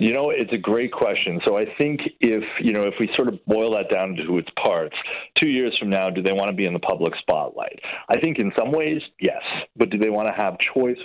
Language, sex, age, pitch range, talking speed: English, male, 40-59, 95-125 Hz, 260 wpm